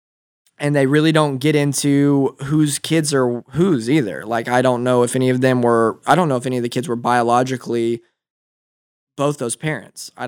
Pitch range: 120-140 Hz